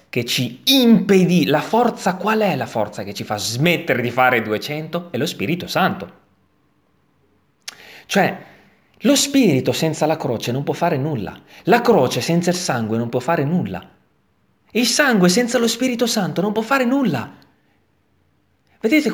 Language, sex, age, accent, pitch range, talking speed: Italian, male, 30-49, native, 145-205 Hz, 155 wpm